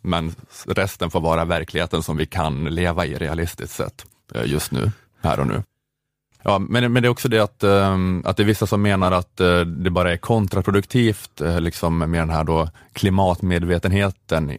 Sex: male